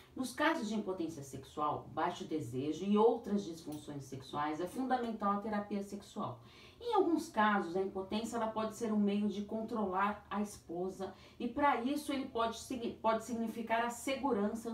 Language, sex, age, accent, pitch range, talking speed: Portuguese, female, 40-59, Brazilian, 185-235 Hz, 155 wpm